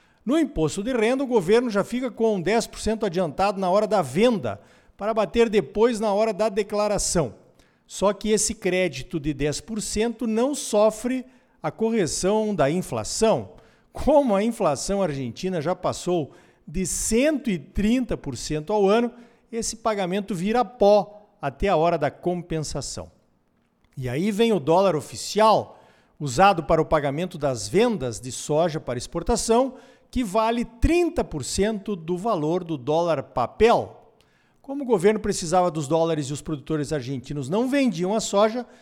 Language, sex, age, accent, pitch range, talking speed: Portuguese, male, 50-69, Brazilian, 165-230 Hz, 140 wpm